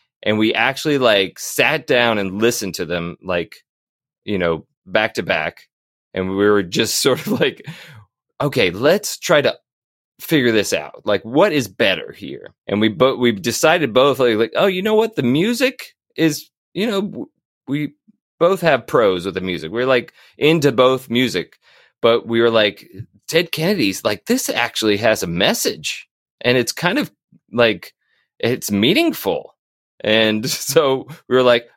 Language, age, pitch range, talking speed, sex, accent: English, 30-49, 95-140 Hz, 165 wpm, male, American